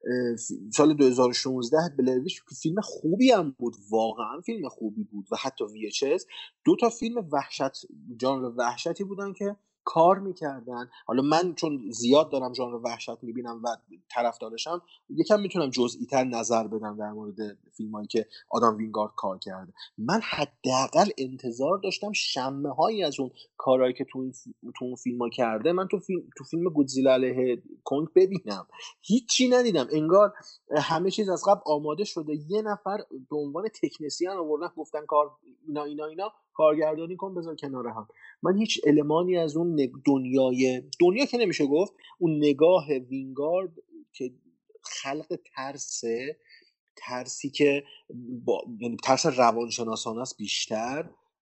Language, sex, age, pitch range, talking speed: Persian, male, 30-49, 120-180 Hz, 140 wpm